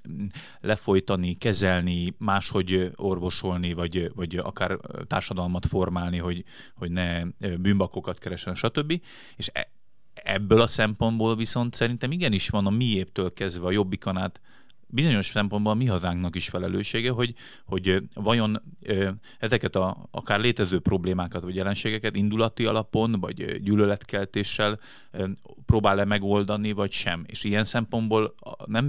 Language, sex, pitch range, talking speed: Hungarian, male, 90-110 Hz, 115 wpm